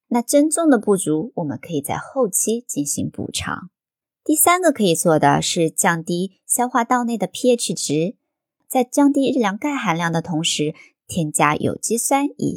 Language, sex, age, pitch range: Chinese, male, 20-39, 155-240 Hz